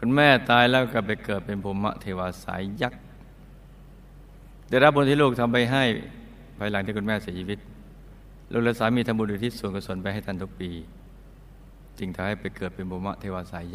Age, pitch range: 60-79, 95-125 Hz